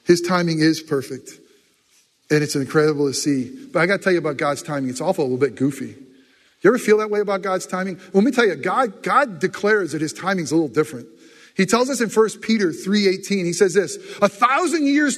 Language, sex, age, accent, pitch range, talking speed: English, male, 40-59, American, 180-235 Hz, 235 wpm